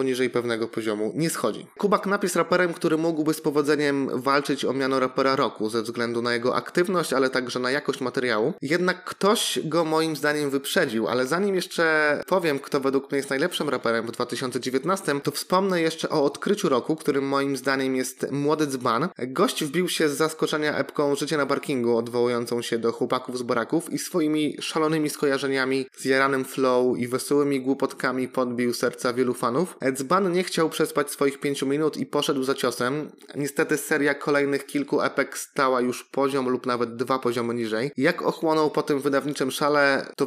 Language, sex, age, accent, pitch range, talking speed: Polish, male, 20-39, native, 130-155 Hz, 175 wpm